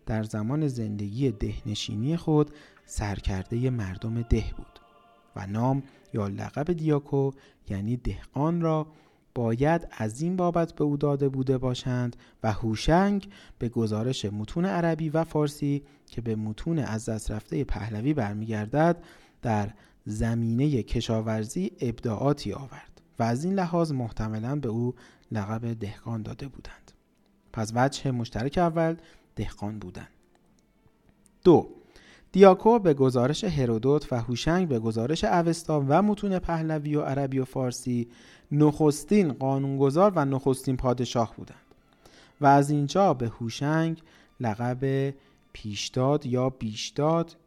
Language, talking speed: Persian, 120 wpm